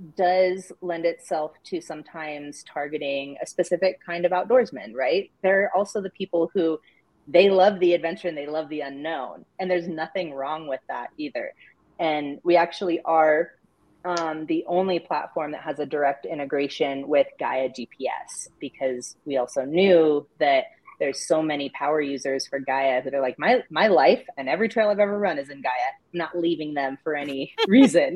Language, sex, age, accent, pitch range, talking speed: English, female, 30-49, American, 140-185 Hz, 175 wpm